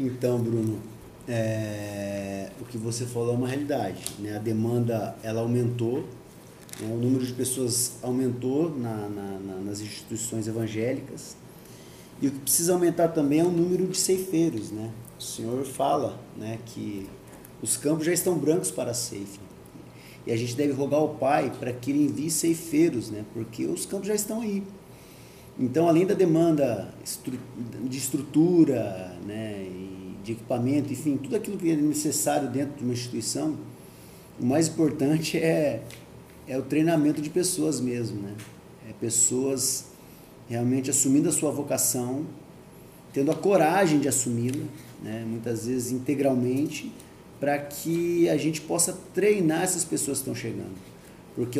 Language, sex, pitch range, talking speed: Portuguese, male, 115-155 Hz, 150 wpm